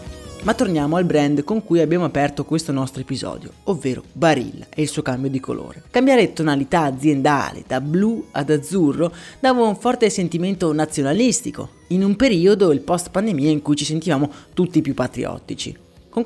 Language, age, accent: Italian, 30-49, native